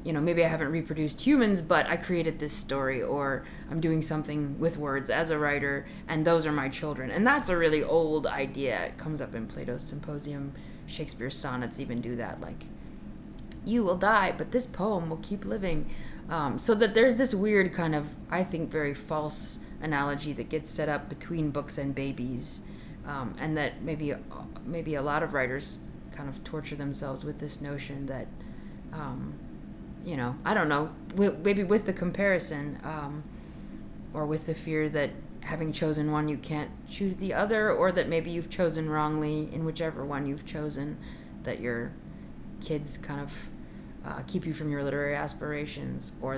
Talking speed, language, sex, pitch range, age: 180 wpm, English, female, 145-170 Hz, 20-39